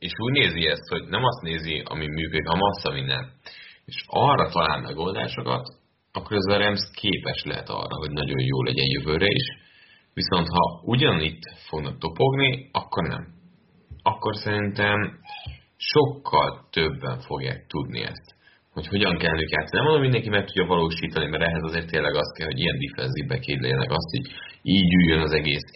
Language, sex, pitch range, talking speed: Hungarian, male, 80-100 Hz, 160 wpm